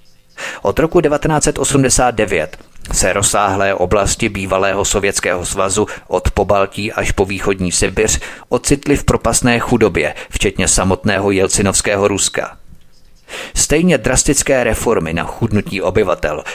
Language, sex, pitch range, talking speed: Czech, male, 100-120 Hz, 105 wpm